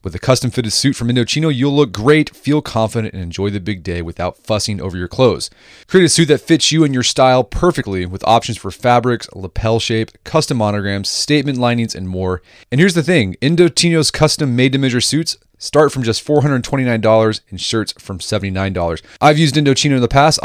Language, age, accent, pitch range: English, 30-49, American, 100-145 Hz